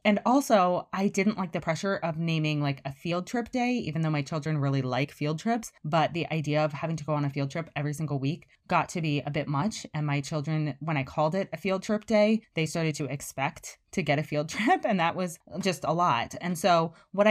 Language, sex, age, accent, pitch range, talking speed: English, female, 20-39, American, 145-185 Hz, 245 wpm